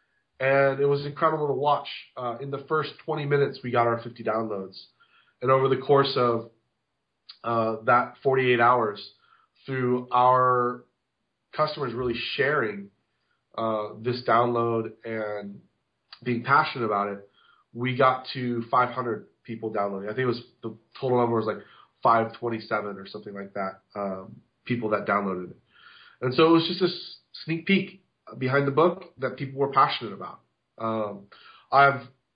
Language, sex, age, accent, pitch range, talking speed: English, male, 30-49, American, 115-140 Hz, 155 wpm